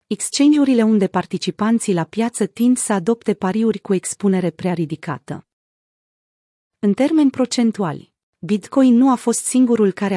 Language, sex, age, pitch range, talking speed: Romanian, female, 30-49, 180-235 Hz, 130 wpm